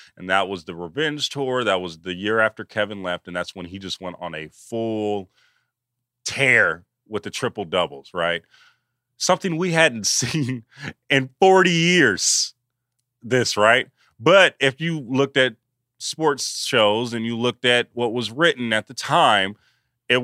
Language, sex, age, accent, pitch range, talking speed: English, male, 30-49, American, 120-180 Hz, 165 wpm